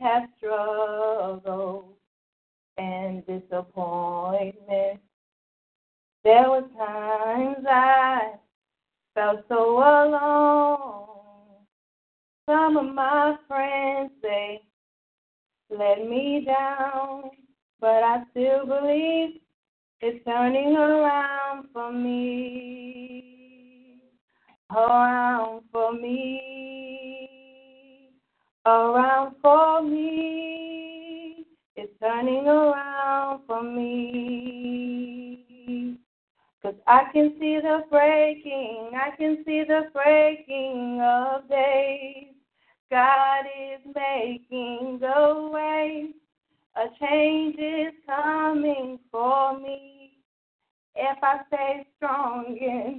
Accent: American